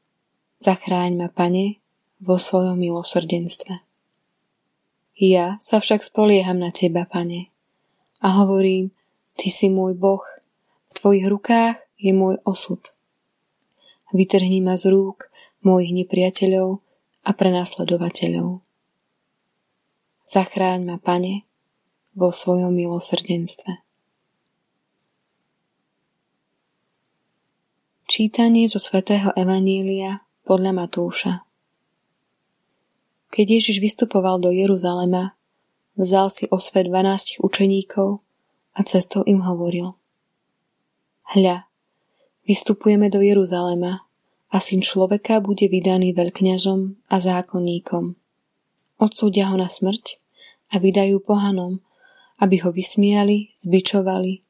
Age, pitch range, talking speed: 20-39, 180-200 Hz, 90 wpm